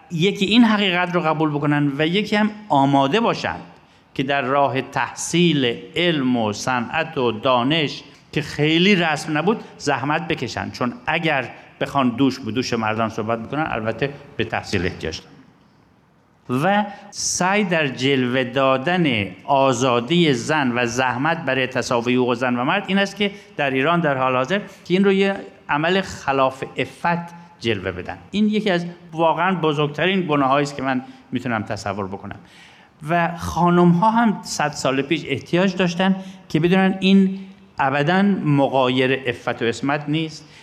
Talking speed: 150 wpm